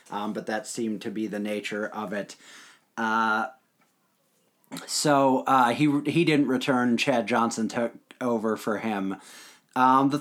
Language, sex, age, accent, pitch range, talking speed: English, male, 30-49, American, 115-155 Hz, 145 wpm